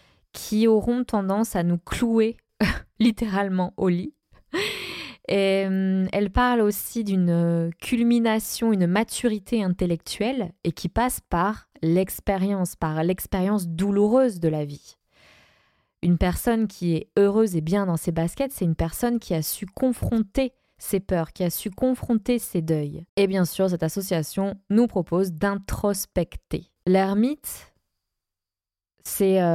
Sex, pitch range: female, 170-220 Hz